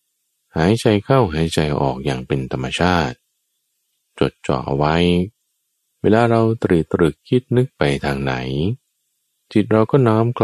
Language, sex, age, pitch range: Thai, male, 20-39, 70-115 Hz